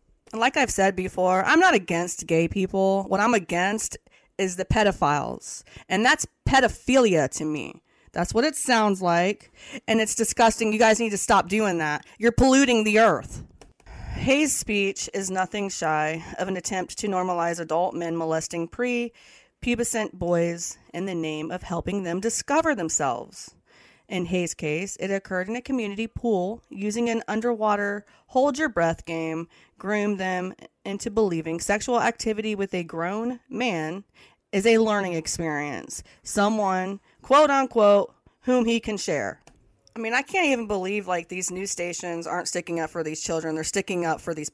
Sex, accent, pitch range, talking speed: female, American, 175-235 Hz, 160 wpm